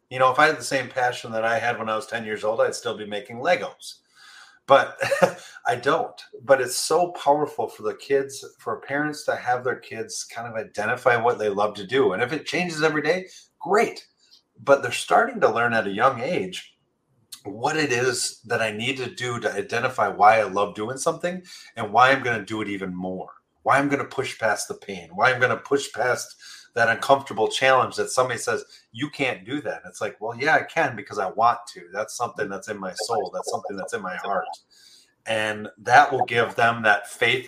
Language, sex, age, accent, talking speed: English, male, 30-49, American, 225 wpm